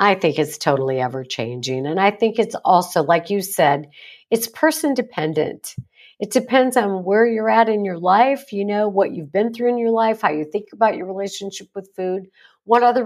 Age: 50-69